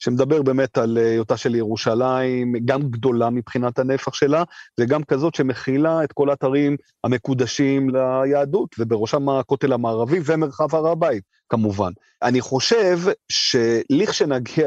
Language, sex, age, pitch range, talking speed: Hebrew, male, 30-49, 115-145 Hz, 120 wpm